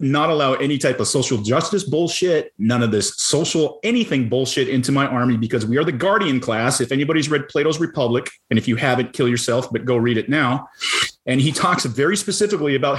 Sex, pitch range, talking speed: male, 110-140 Hz, 210 wpm